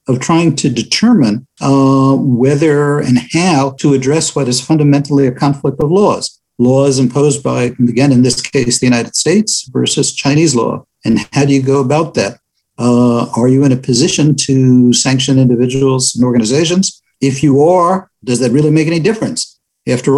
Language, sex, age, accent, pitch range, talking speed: English, male, 50-69, American, 125-145 Hz, 170 wpm